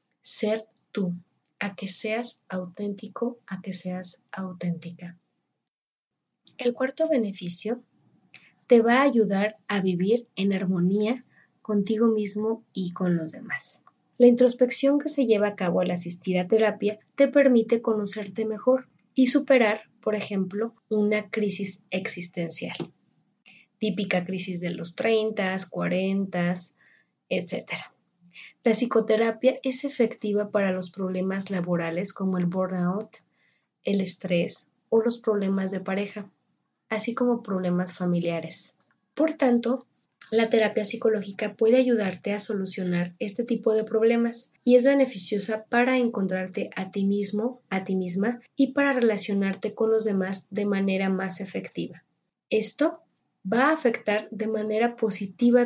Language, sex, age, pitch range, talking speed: Spanish, female, 20-39, 190-235 Hz, 130 wpm